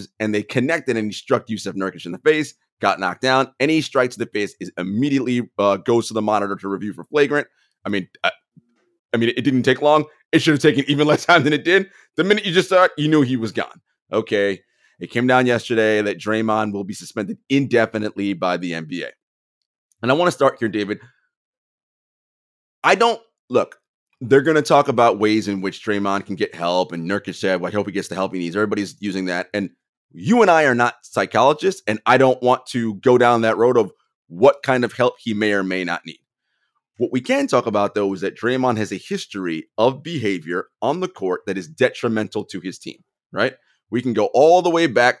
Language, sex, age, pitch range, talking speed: English, male, 30-49, 100-140 Hz, 225 wpm